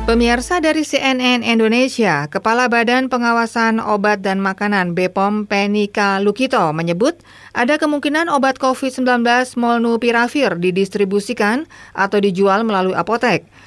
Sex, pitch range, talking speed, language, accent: female, 185-235 Hz, 105 wpm, Indonesian, native